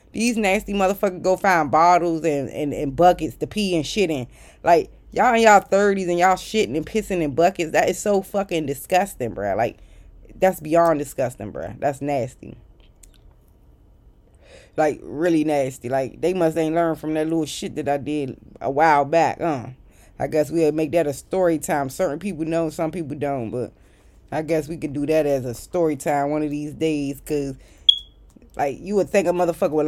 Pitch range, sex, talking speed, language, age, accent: 150-190 Hz, female, 195 wpm, English, 20-39, American